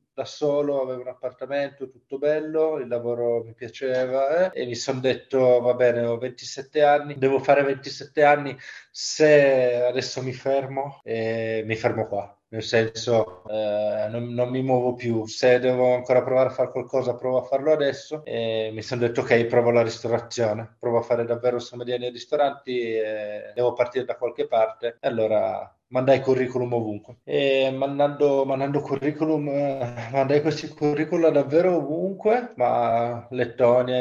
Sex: male